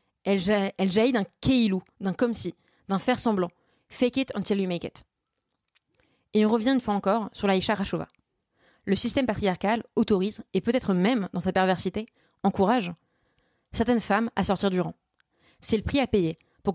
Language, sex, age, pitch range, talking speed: French, female, 20-39, 185-220 Hz, 170 wpm